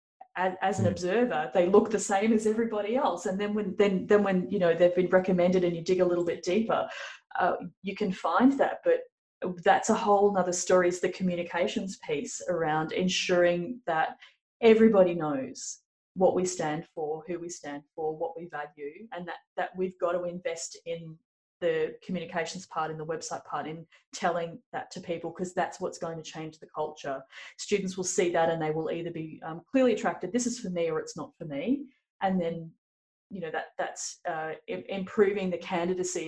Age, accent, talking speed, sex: 30-49, Australian, 195 wpm, female